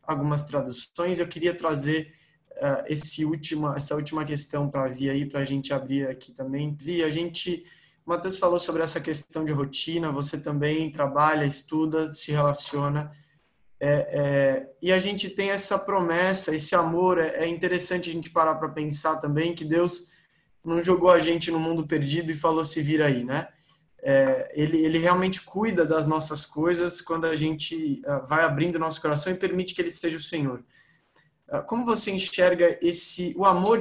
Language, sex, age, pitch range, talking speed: Portuguese, male, 20-39, 150-180 Hz, 175 wpm